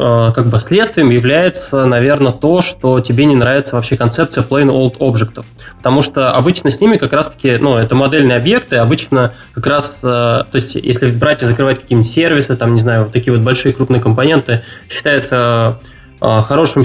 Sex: male